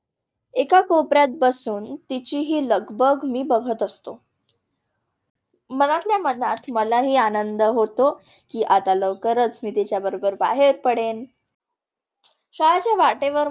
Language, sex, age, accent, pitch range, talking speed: English, female, 20-39, Indian, 225-285 Hz, 110 wpm